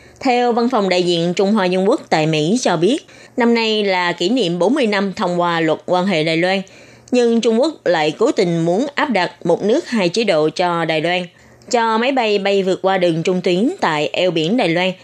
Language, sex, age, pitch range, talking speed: Vietnamese, female, 20-39, 175-225 Hz, 230 wpm